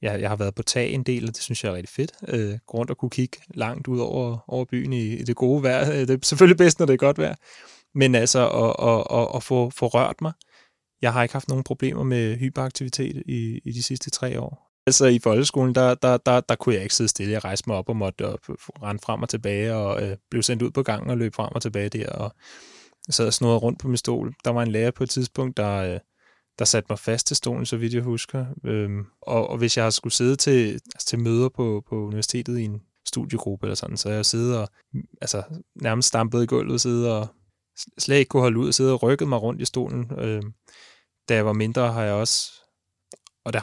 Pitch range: 110-130 Hz